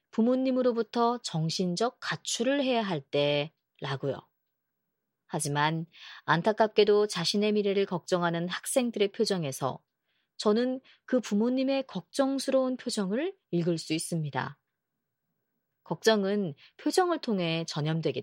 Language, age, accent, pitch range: Korean, 30-49, native, 155-235 Hz